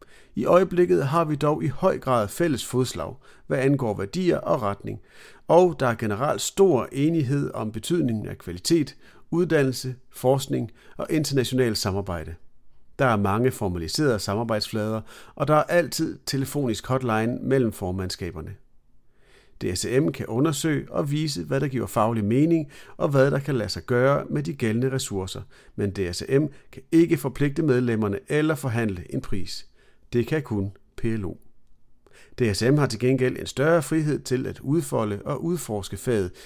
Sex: male